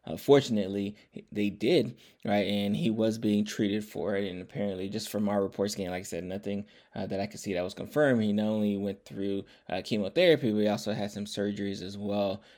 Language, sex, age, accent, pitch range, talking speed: English, male, 20-39, American, 100-115 Hz, 220 wpm